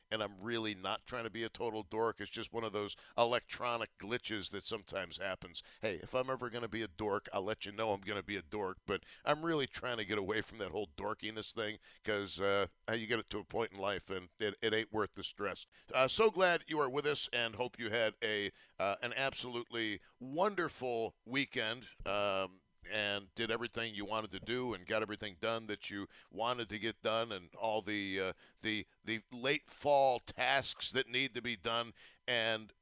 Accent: American